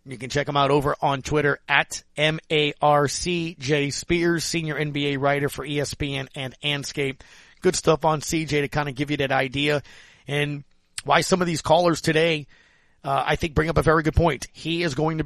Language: English